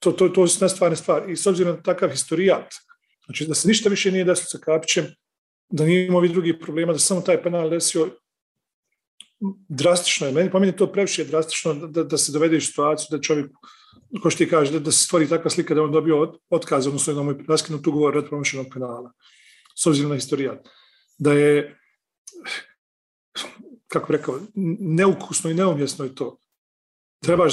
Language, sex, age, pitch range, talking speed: English, male, 40-59, 145-175 Hz, 190 wpm